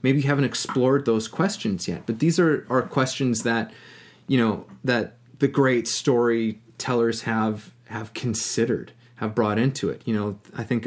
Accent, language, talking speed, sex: American, English, 165 wpm, male